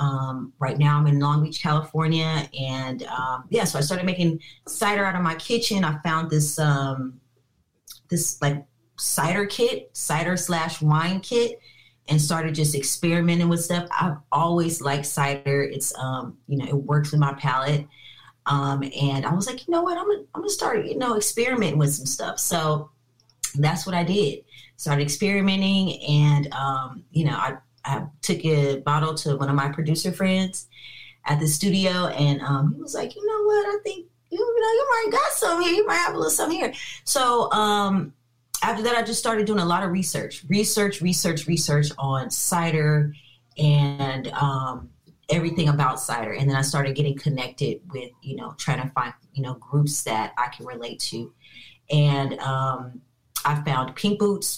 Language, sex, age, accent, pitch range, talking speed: English, female, 30-49, American, 140-180 Hz, 185 wpm